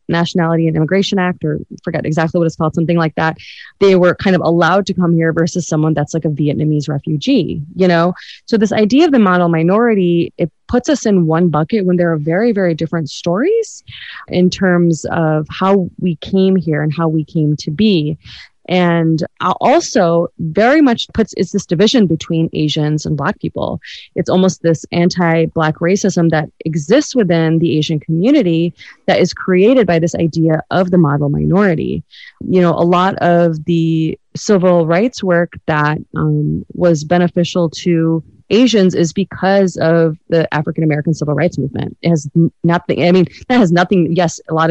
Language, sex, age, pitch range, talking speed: English, female, 20-39, 160-185 Hz, 175 wpm